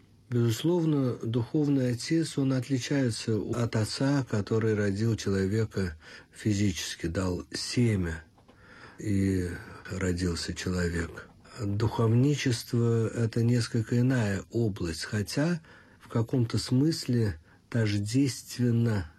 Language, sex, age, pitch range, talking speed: Russian, male, 50-69, 95-125 Hz, 85 wpm